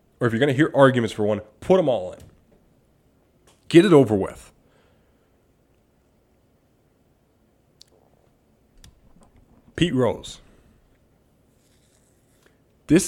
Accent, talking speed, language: American, 90 wpm, English